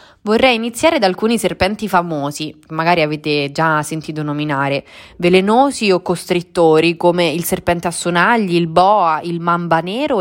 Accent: native